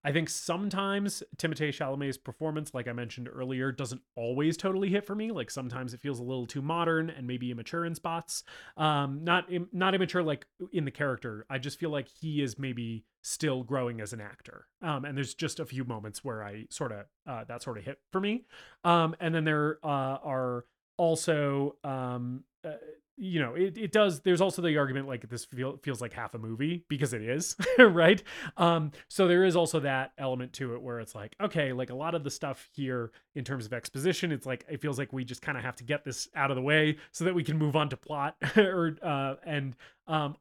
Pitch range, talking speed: 125-165 Hz, 225 wpm